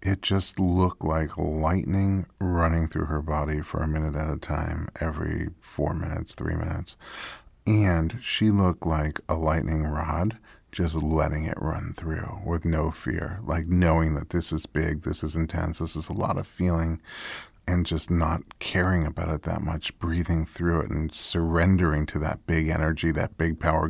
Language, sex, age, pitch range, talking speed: English, male, 40-59, 80-95 Hz, 175 wpm